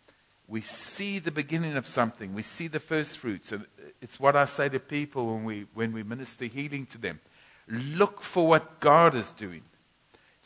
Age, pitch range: 60-79, 110-145 Hz